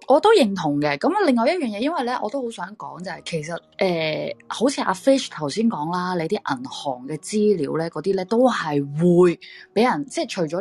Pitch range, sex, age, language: 160-240 Hz, female, 20-39, Chinese